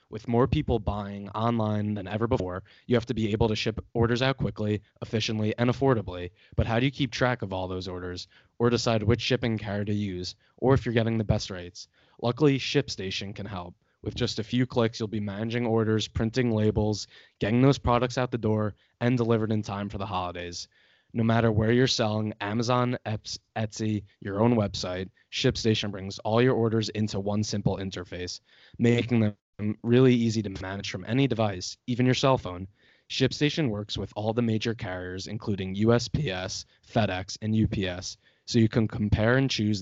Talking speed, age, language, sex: 185 wpm, 20-39, English, male